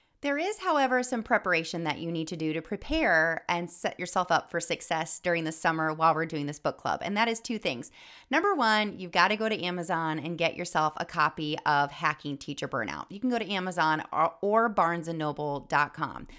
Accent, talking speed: American, 205 wpm